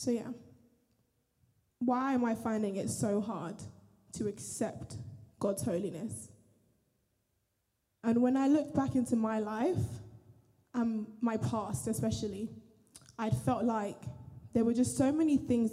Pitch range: 195-230 Hz